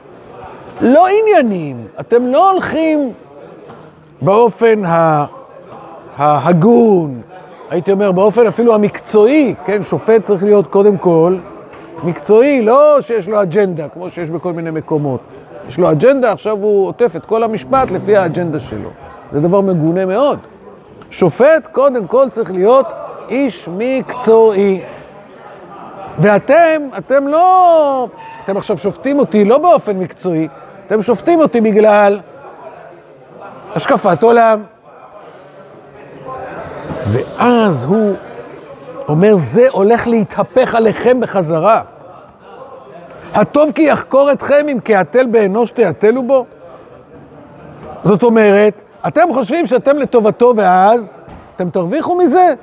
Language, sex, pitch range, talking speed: Hebrew, male, 185-255 Hz, 110 wpm